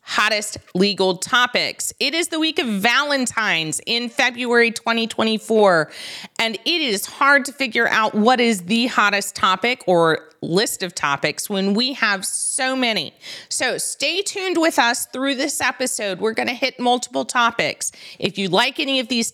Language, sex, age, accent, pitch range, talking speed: English, female, 30-49, American, 200-260 Hz, 165 wpm